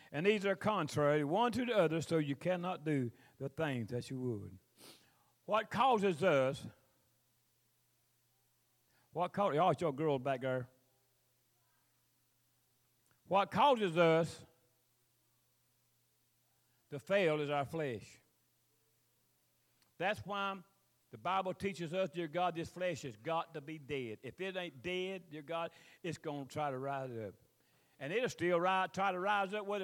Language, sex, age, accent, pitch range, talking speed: English, male, 40-59, American, 125-185 Hz, 145 wpm